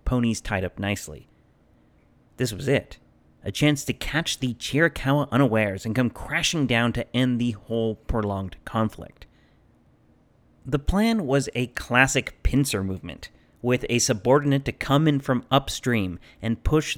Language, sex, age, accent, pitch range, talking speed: English, male, 30-49, American, 105-140 Hz, 145 wpm